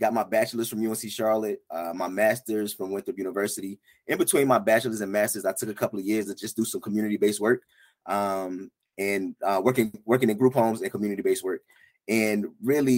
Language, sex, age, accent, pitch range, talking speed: English, male, 20-39, American, 110-135 Hz, 200 wpm